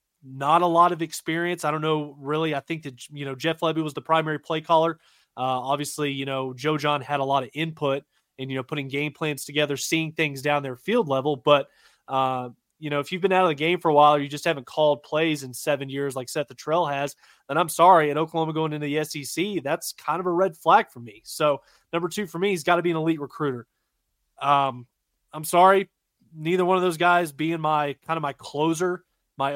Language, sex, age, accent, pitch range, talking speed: English, male, 20-39, American, 140-165 Hz, 240 wpm